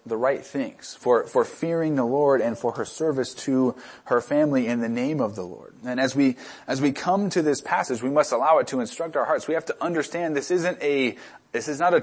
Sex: male